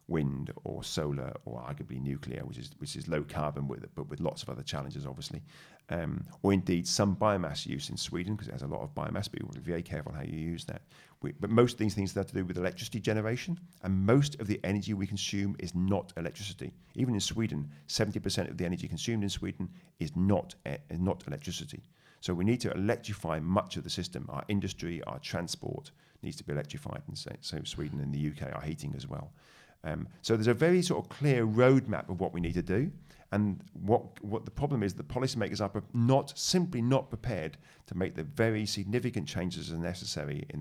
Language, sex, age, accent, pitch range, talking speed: Swedish, male, 40-59, British, 80-110 Hz, 225 wpm